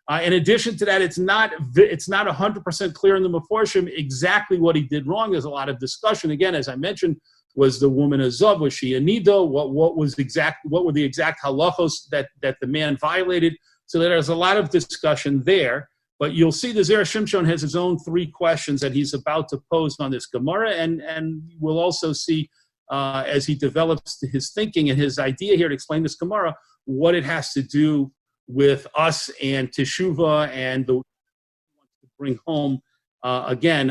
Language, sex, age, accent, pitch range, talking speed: English, male, 40-59, American, 140-180 Hz, 195 wpm